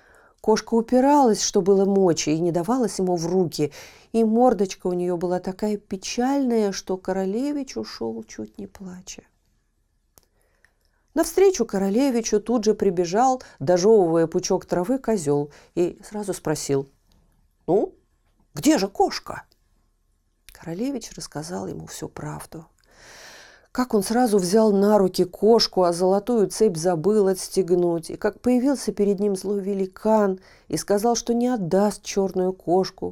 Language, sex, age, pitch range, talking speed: Russian, female, 40-59, 170-220 Hz, 130 wpm